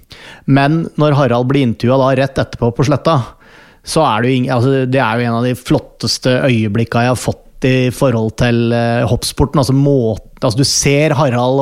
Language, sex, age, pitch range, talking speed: English, male, 30-49, 120-140 Hz, 175 wpm